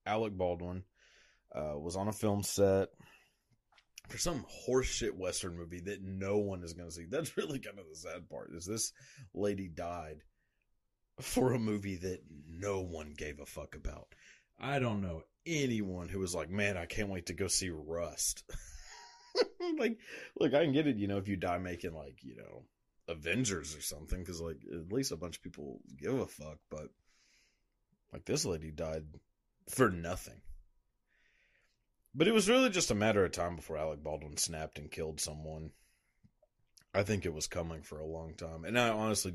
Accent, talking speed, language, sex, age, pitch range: American, 185 wpm, English, male, 30-49, 80-100 Hz